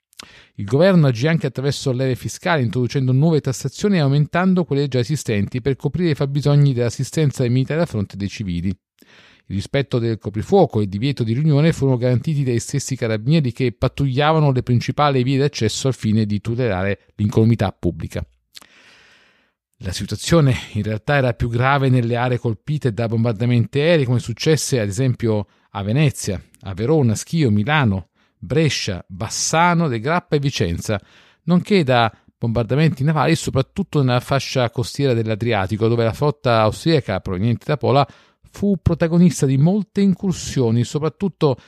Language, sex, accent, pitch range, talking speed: Italian, male, native, 110-150 Hz, 150 wpm